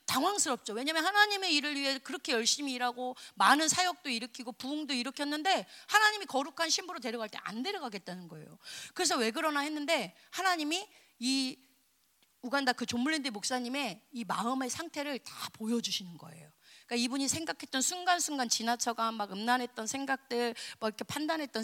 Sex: female